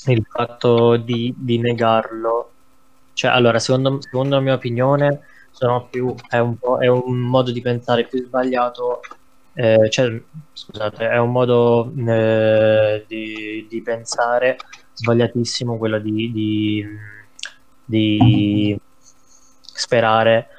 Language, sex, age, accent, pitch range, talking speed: Italian, male, 20-39, native, 110-125 Hz, 115 wpm